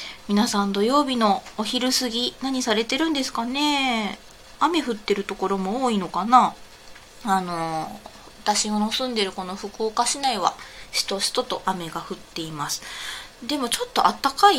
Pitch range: 185-255 Hz